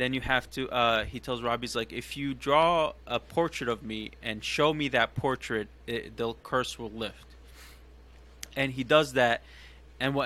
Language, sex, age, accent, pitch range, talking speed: English, male, 20-39, American, 110-130 Hz, 180 wpm